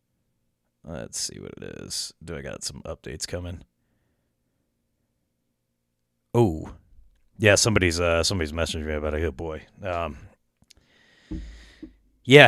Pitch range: 90-125 Hz